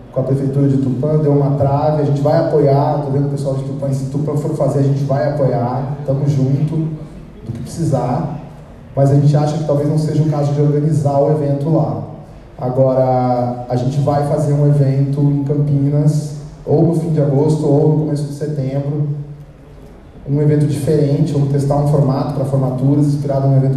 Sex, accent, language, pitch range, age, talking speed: male, Brazilian, Portuguese, 130-145 Hz, 20-39, 195 wpm